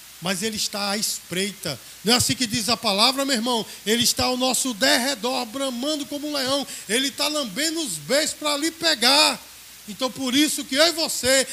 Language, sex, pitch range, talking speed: Portuguese, male, 230-290 Hz, 200 wpm